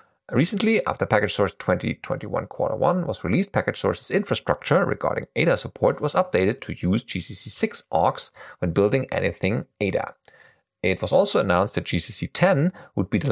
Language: English